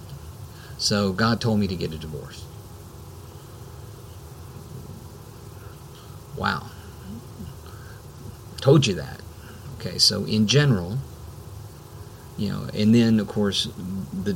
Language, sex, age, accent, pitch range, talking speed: English, male, 50-69, American, 95-125 Hz, 95 wpm